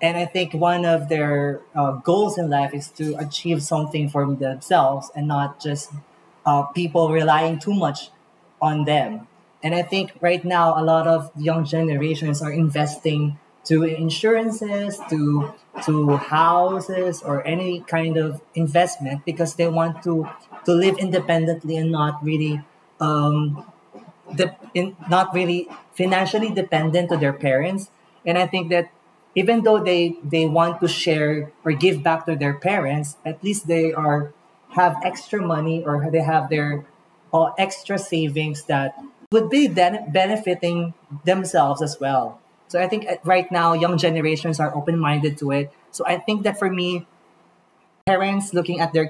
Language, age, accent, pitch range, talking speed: English, 20-39, Filipino, 150-180 Hz, 155 wpm